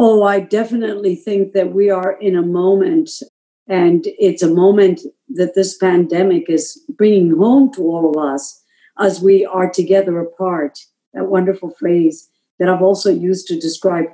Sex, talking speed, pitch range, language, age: female, 160 wpm, 185-235 Hz, English, 50-69